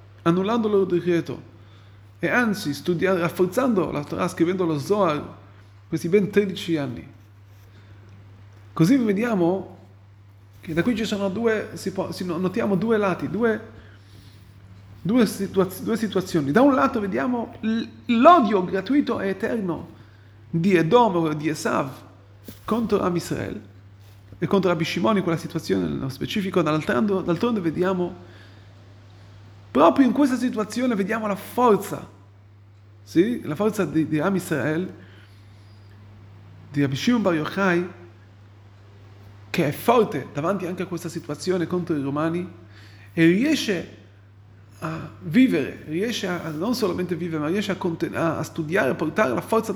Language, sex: Italian, male